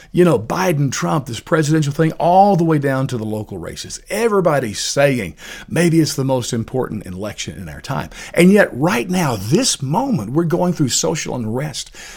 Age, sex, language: 50-69, male, English